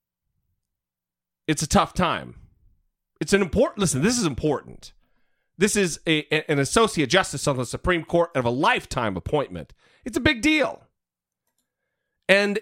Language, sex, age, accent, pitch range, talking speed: English, male, 40-59, American, 125-190 Hz, 145 wpm